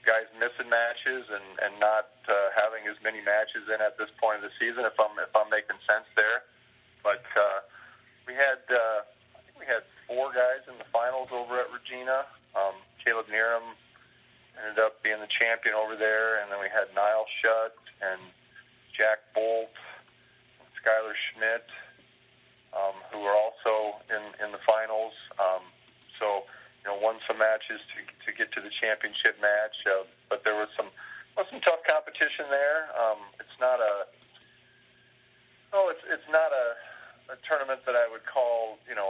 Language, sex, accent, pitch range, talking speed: English, male, American, 105-125 Hz, 175 wpm